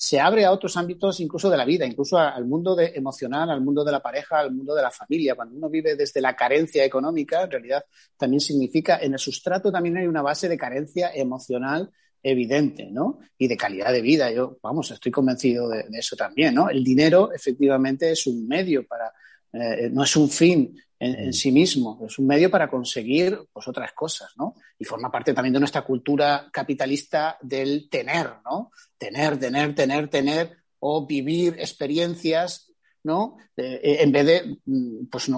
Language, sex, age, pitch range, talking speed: Spanish, male, 30-49, 130-165 Hz, 185 wpm